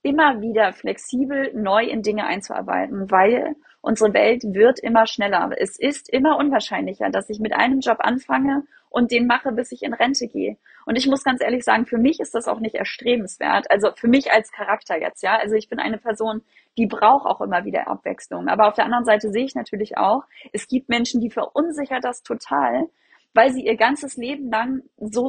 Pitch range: 220-265 Hz